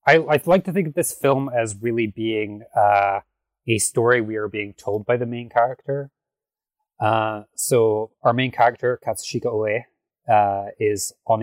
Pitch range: 100-120 Hz